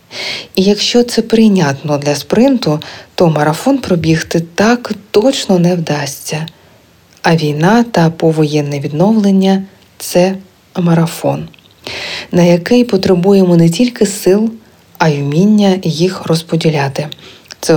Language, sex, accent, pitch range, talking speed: Ukrainian, female, native, 155-195 Hz, 110 wpm